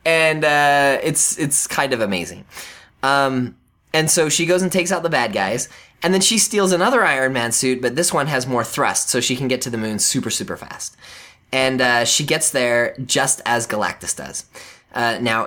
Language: English